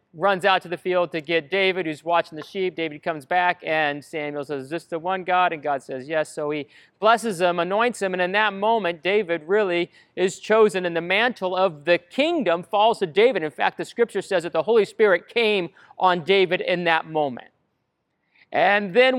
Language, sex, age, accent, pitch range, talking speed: English, male, 40-59, American, 165-215 Hz, 210 wpm